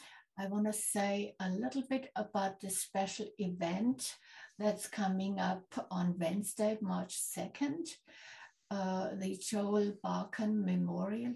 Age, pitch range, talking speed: 60-79, 190-215 Hz, 115 wpm